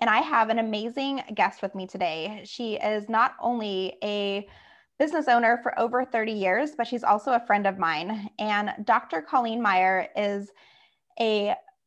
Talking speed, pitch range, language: 165 wpm, 200-245 Hz, English